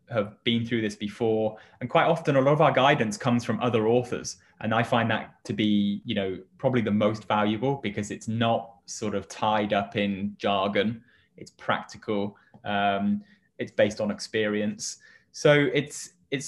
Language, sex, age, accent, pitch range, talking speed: English, male, 20-39, British, 105-120 Hz, 175 wpm